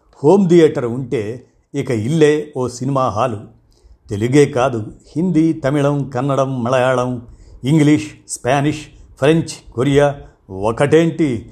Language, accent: Telugu, native